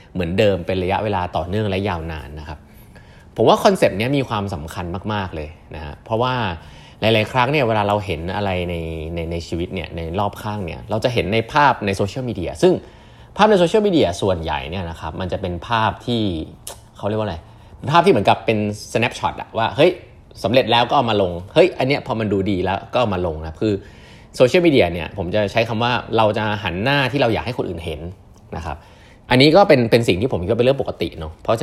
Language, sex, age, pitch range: Thai, male, 30-49, 85-115 Hz